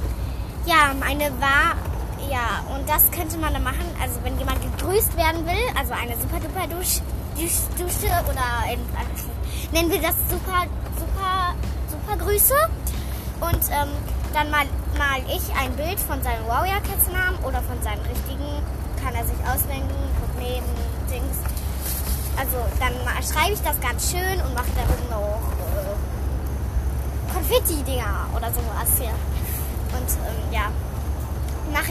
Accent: German